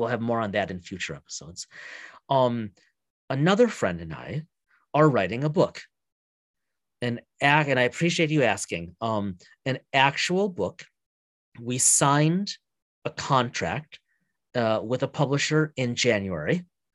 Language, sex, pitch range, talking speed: English, male, 115-145 Hz, 135 wpm